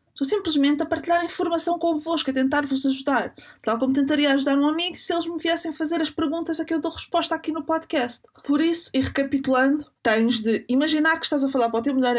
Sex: female